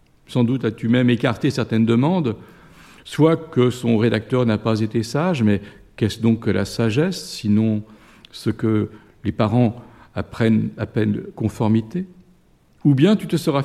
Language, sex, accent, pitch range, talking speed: French, male, French, 110-140 Hz, 155 wpm